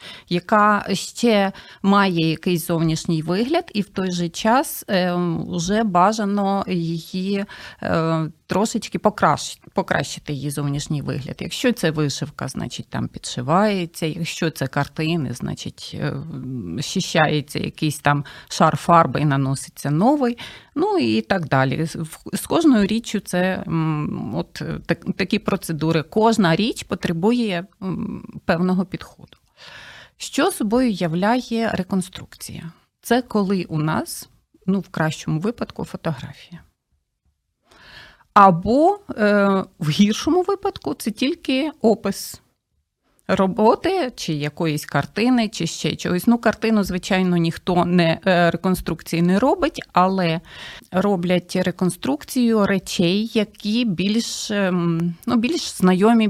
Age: 30-49